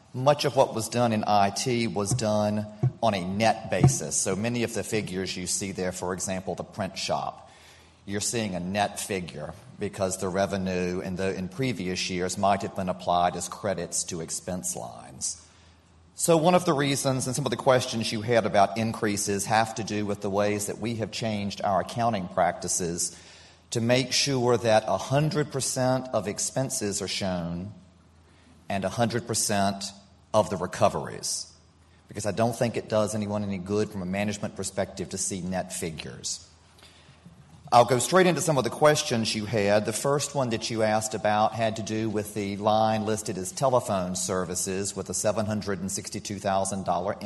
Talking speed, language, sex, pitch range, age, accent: 170 wpm, English, male, 95-115 Hz, 40-59, American